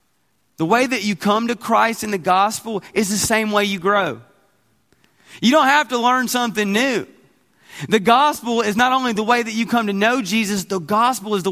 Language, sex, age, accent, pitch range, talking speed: English, male, 30-49, American, 150-205 Hz, 210 wpm